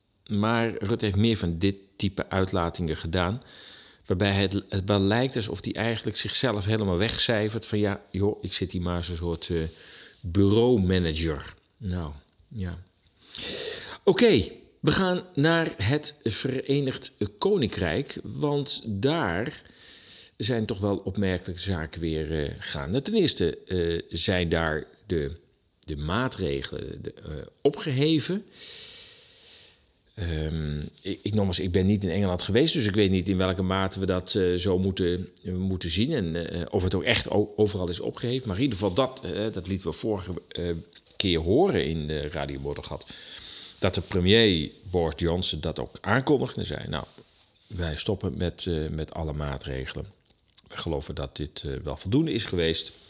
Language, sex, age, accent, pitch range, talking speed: Dutch, male, 50-69, Dutch, 85-110 Hz, 160 wpm